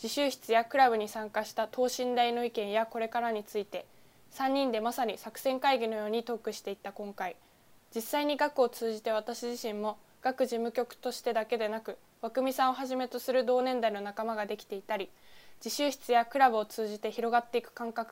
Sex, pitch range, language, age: female, 210-250 Hz, Japanese, 20-39